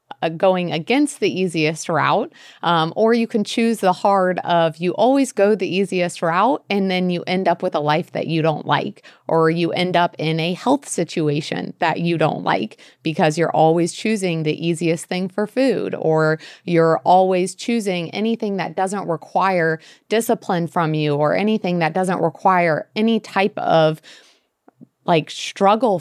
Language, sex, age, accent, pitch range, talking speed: English, female, 30-49, American, 165-200 Hz, 170 wpm